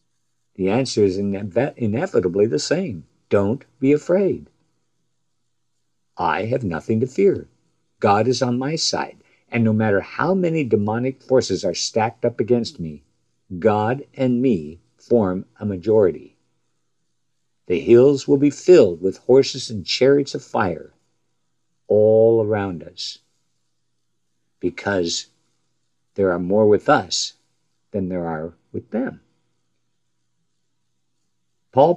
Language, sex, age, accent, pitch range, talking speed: English, male, 50-69, American, 95-135 Hz, 120 wpm